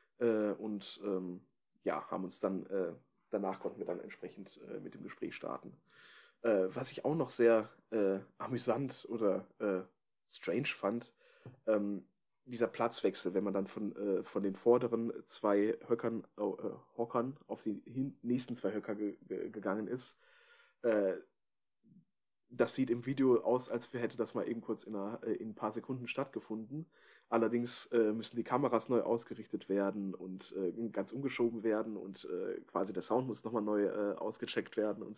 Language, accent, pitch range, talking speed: German, German, 105-125 Hz, 155 wpm